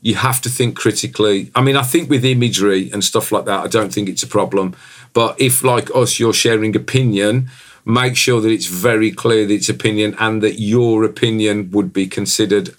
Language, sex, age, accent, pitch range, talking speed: English, male, 40-59, British, 95-120 Hz, 205 wpm